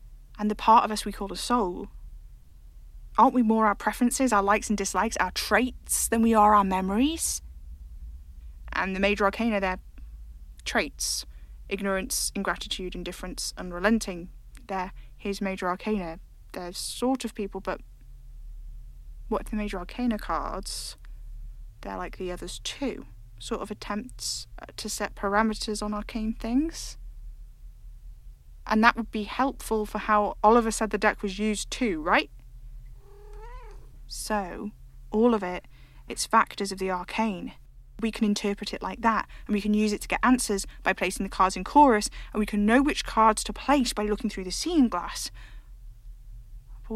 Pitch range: 165-215 Hz